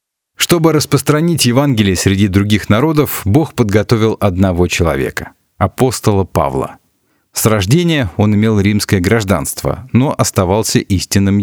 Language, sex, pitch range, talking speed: Russian, male, 95-125 Hz, 110 wpm